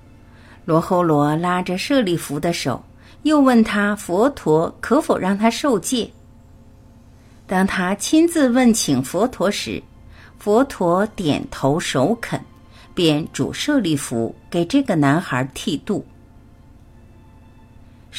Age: 50-69